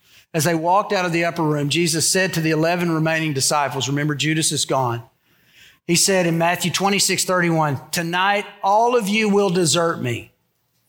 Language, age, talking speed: English, 50-69, 175 wpm